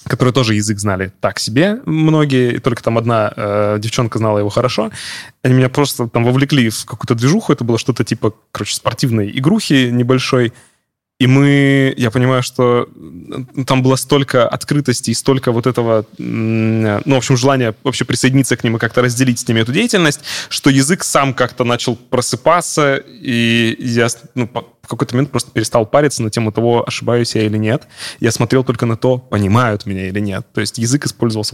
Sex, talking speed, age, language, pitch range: male, 180 wpm, 20-39, Russian, 115-135 Hz